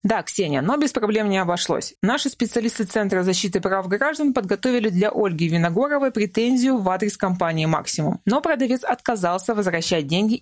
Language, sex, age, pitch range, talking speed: Russian, female, 20-39, 175-235 Hz, 155 wpm